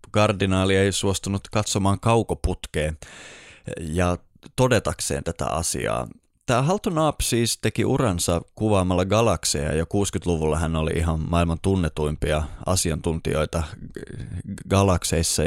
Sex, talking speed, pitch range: male, 100 wpm, 85-115 Hz